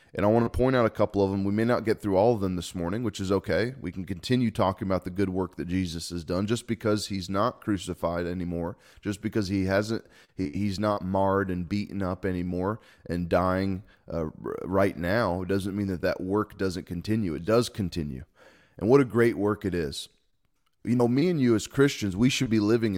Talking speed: 225 wpm